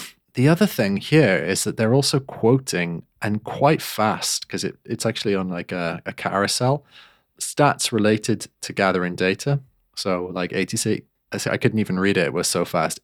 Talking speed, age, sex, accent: 175 wpm, 20-39, male, British